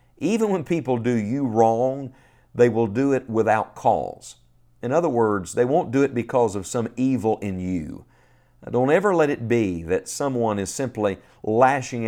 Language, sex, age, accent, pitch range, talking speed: English, male, 50-69, American, 100-130 Hz, 175 wpm